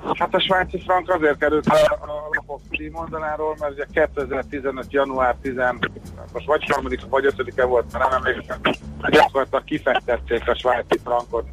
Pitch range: 120-145 Hz